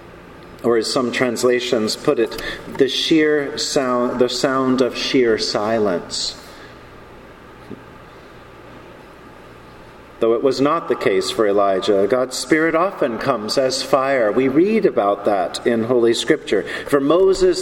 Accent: American